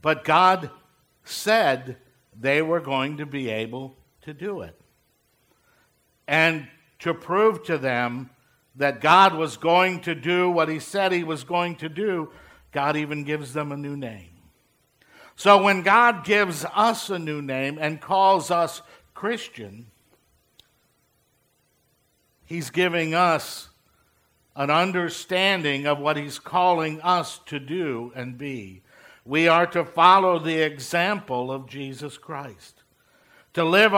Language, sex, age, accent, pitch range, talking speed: English, male, 60-79, American, 135-175 Hz, 130 wpm